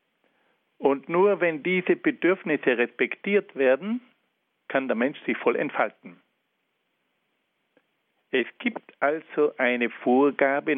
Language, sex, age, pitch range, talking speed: German, male, 60-79, 125-190 Hz, 100 wpm